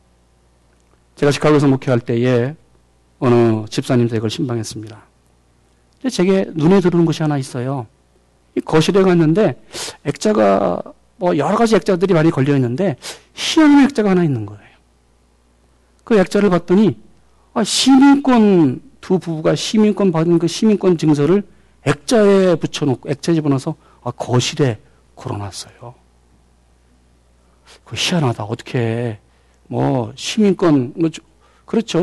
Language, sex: Korean, male